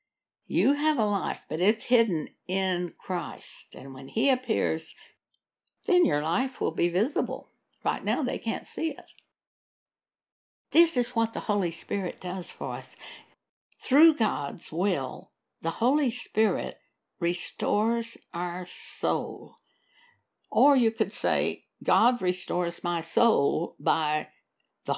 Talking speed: 125 wpm